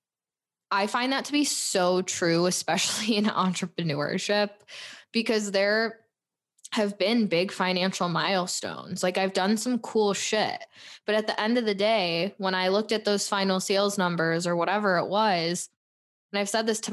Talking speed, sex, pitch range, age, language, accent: 165 wpm, female, 175-215 Hz, 10-29, English, American